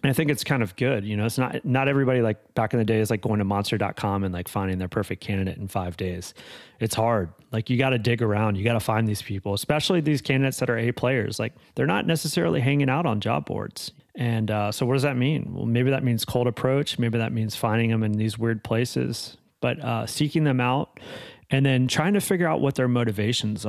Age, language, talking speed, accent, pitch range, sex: 30-49, English, 245 wpm, American, 110-135 Hz, male